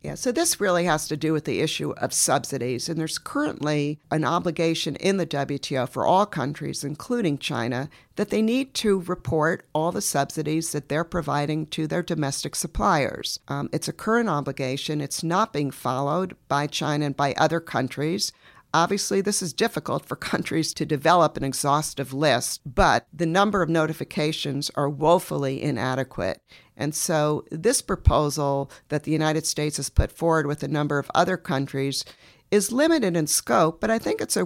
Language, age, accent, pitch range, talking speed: English, 50-69, American, 145-175 Hz, 175 wpm